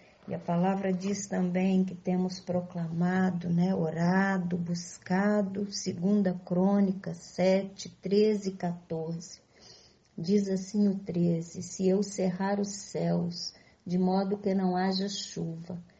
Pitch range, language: 175-195 Hz, Portuguese